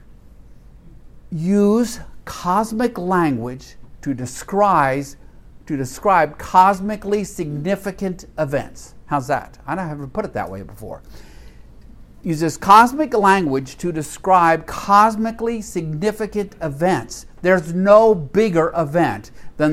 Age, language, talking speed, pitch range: 60-79, English, 100 wpm, 125-180 Hz